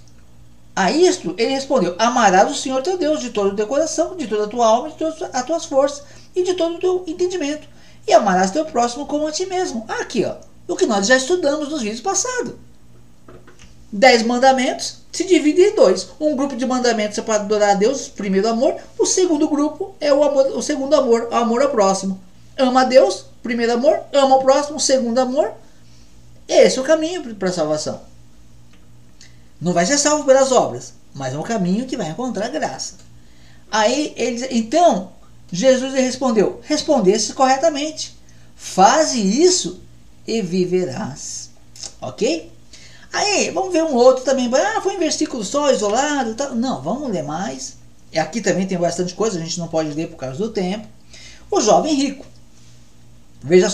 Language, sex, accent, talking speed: Portuguese, male, Brazilian, 175 wpm